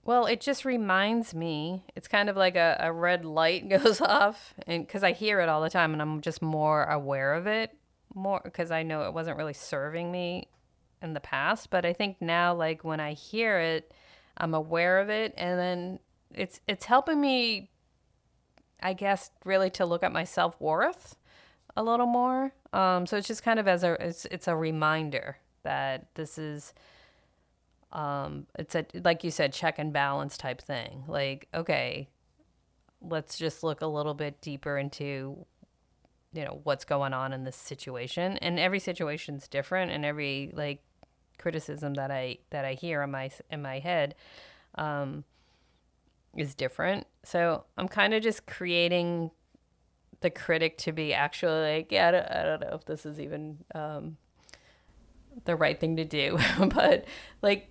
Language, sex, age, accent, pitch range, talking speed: English, female, 30-49, American, 150-190 Hz, 170 wpm